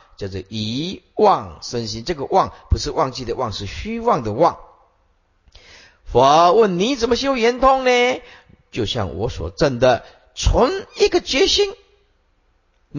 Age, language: 50-69, Chinese